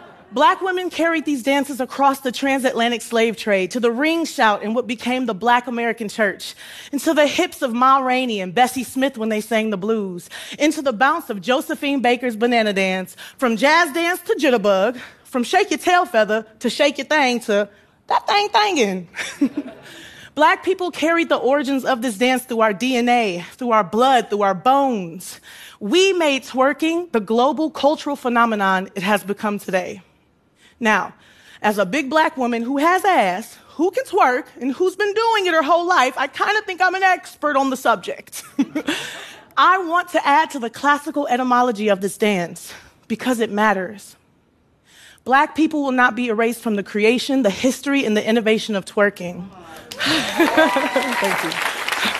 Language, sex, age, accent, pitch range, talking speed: English, female, 30-49, American, 220-305 Hz, 175 wpm